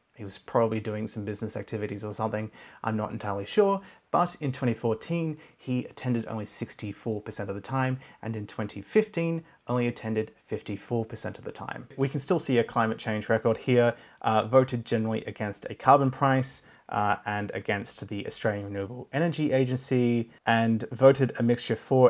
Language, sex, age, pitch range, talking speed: English, male, 30-49, 105-135 Hz, 165 wpm